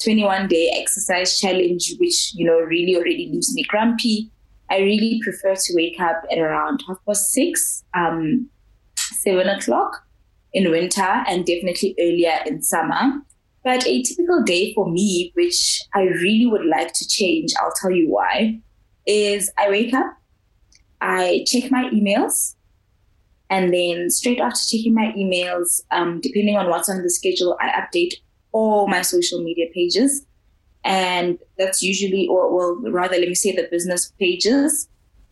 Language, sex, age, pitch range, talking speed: English, female, 20-39, 175-230 Hz, 155 wpm